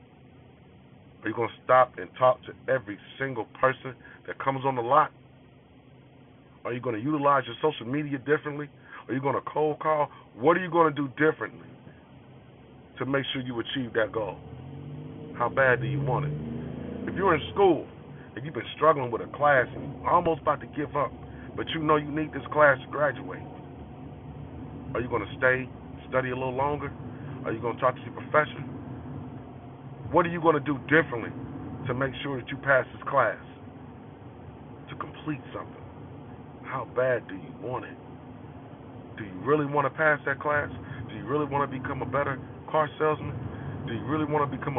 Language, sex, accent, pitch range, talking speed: English, male, American, 125-145 Hz, 190 wpm